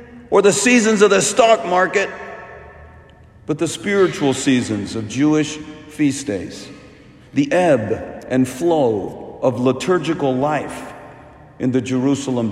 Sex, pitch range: male, 135-200 Hz